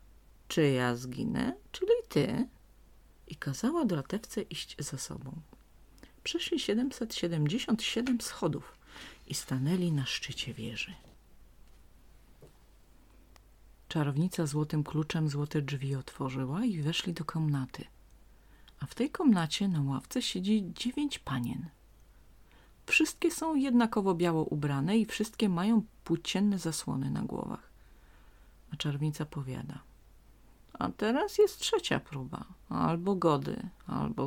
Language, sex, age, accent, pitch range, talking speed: Polish, female, 40-59, native, 140-220 Hz, 105 wpm